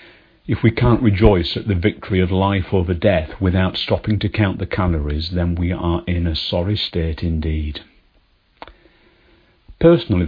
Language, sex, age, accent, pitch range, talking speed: English, male, 50-69, British, 85-105 Hz, 150 wpm